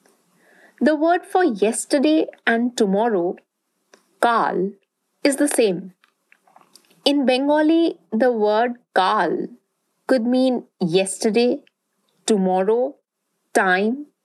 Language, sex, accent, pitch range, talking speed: English, female, Indian, 210-295 Hz, 85 wpm